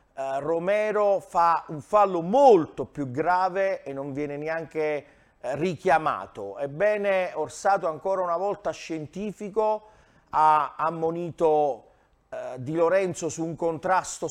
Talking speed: 105 wpm